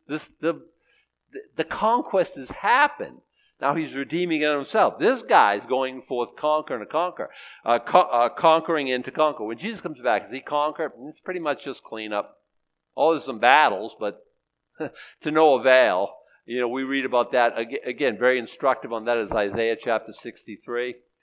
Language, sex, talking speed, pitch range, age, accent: English, male, 165 wpm, 115-160 Hz, 50-69, American